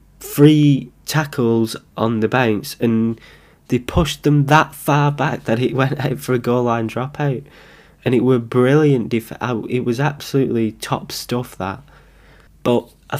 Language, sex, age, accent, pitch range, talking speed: English, male, 20-39, British, 105-130 Hz, 150 wpm